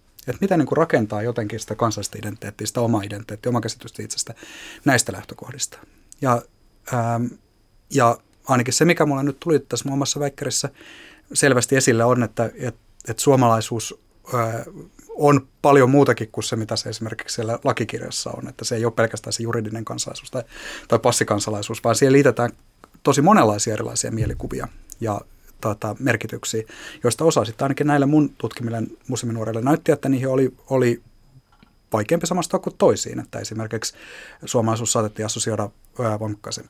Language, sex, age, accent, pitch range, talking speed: Finnish, male, 30-49, native, 110-130 Hz, 150 wpm